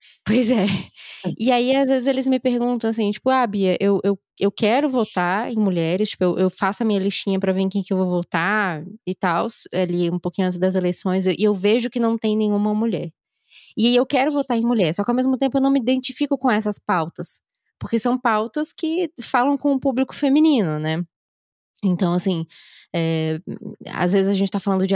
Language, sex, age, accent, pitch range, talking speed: Portuguese, female, 20-39, Brazilian, 180-240 Hz, 215 wpm